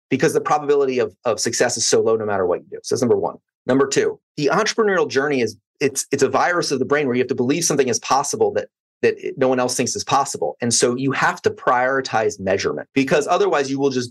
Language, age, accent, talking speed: English, 30-49, American, 255 wpm